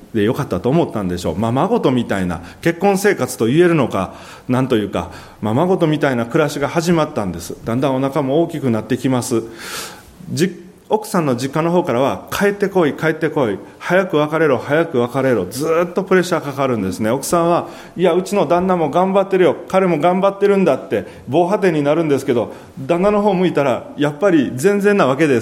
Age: 30-49